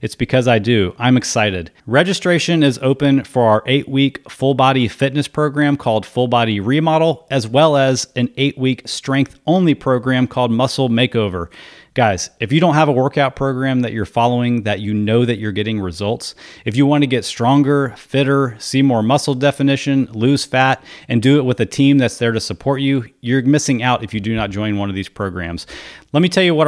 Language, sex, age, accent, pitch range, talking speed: English, male, 30-49, American, 110-140 Hz, 205 wpm